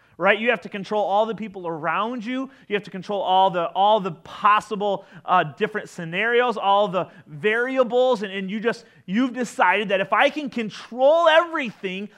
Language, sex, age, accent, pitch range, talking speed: English, male, 30-49, American, 155-230 Hz, 180 wpm